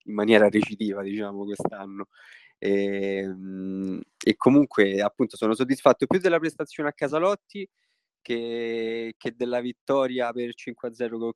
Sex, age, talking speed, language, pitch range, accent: male, 20-39, 125 wpm, Italian, 105-120 Hz, native